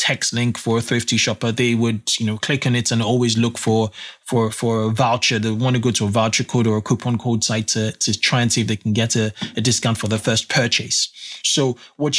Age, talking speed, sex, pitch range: 20-39, 255 wpm, male, 115-145 Hz